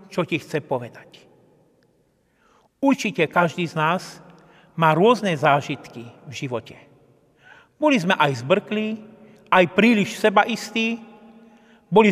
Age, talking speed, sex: 40-59, 110 wpm, male